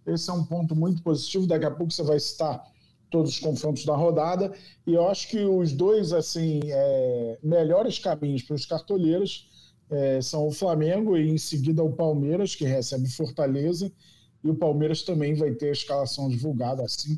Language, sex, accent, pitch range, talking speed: Portuguese, male, Brazilian, 130-165 Hz, 180 wpm